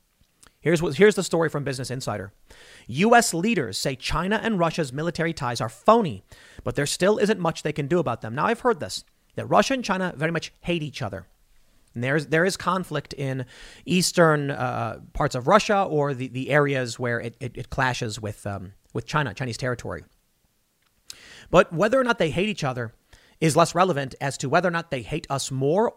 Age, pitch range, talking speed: 40-59, 130-180 Hz, 205 wpm